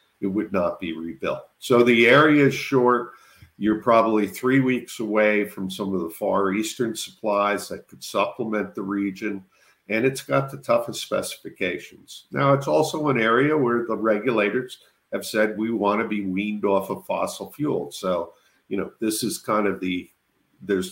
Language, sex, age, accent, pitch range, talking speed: English, male, 50-69, American, 95-120 Hz, 175 wpm